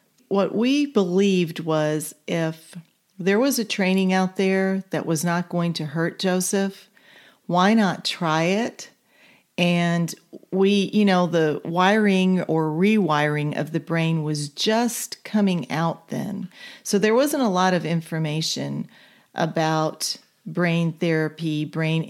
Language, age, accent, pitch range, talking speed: English, 40-59, American, 160-200 Hz, 135 wpm